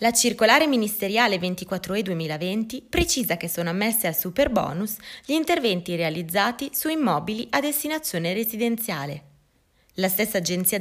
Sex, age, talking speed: female, 20-39, 130 wpm